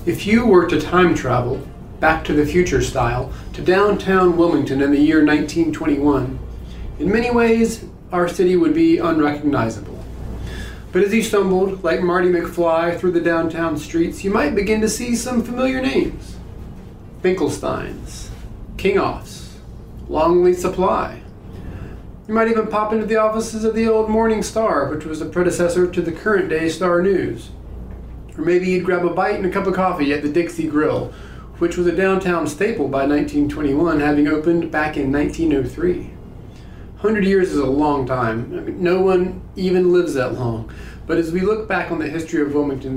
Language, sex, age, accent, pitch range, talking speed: English, male, 40-59, American, 145-185 Hz, 170 wpm